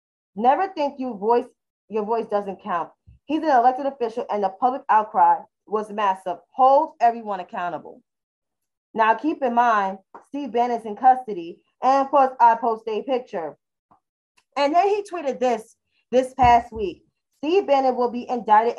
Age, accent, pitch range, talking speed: 10-29, American, 225-295 Hz, 155 wpm